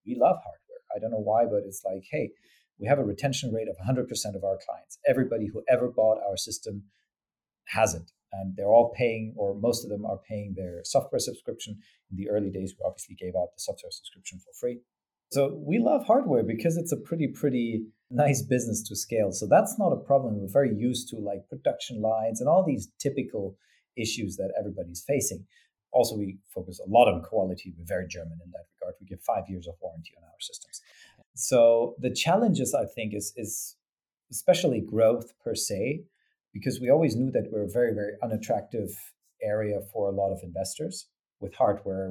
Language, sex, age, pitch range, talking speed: English, male, 40-59, 100-130 Hz, 200 wpm